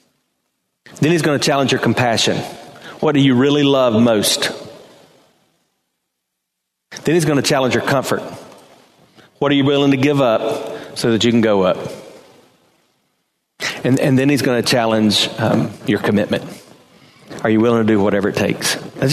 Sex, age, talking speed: male, 40-59, 165 wpm